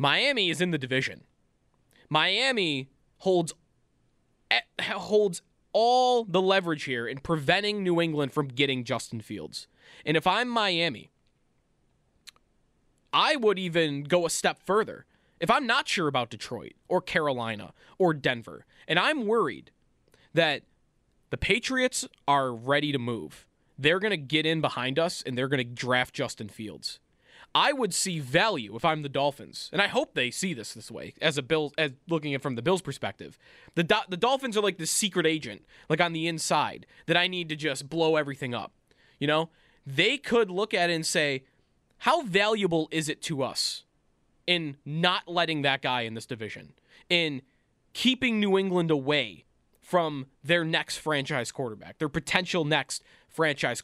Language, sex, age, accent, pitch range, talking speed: English, male, 20-39, American, 135-180 Hz, 165 wpm